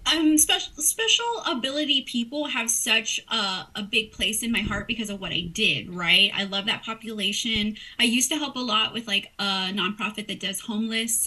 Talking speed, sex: 195 wpm, female